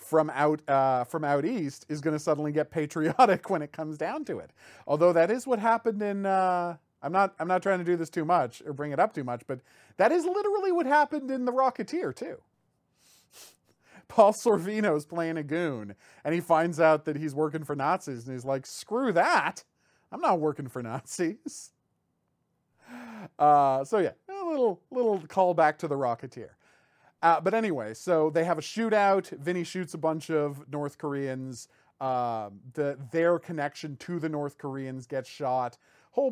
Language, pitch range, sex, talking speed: English, 135-175 Hz, male, 185 wpm